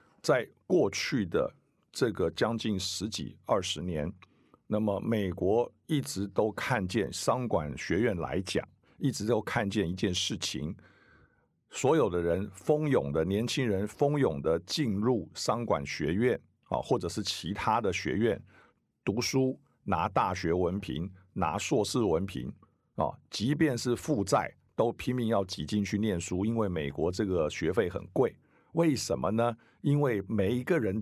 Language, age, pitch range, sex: Chinese, 50-69, 95-125 Hz, male